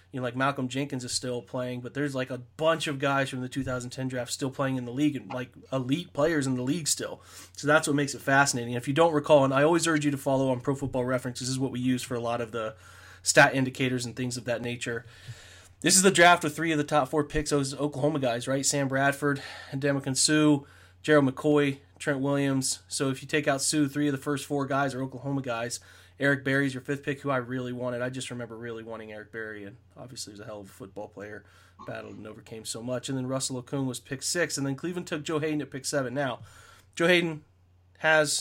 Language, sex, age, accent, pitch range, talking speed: English, male, 20-39, American, 120-140 Hz, 250 wpm